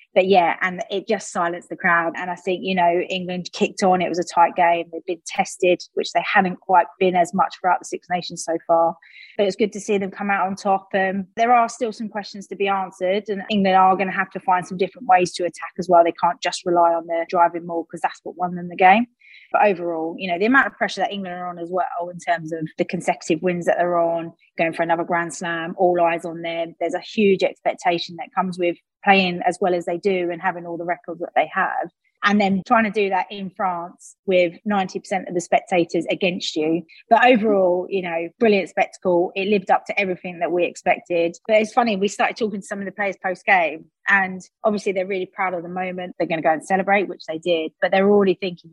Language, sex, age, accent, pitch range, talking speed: English, female, 20-39, British, 170-195 Hz, 250 wpm